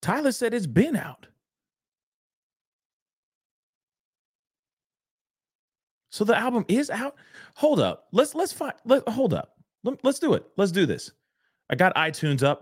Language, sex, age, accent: English, male, 40-59, American